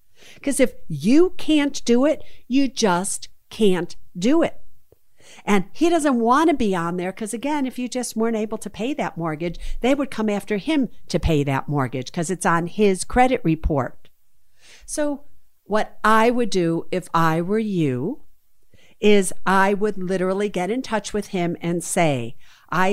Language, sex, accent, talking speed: English, female, American, 175 wpm